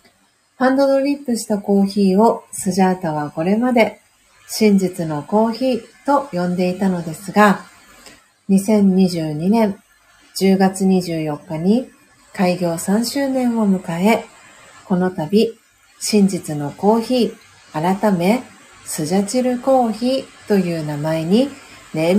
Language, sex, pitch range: Japanese, female, 185-235 Hz